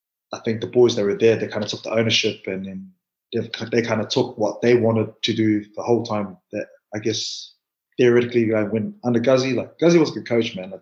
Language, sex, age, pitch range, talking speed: English, male, 20-39, 105-115 Hz, 250 wpm